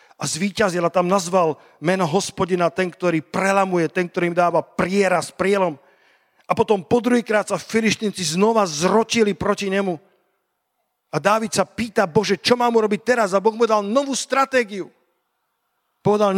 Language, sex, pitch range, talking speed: Slovak, male, 180-220 Hz, 155 wpm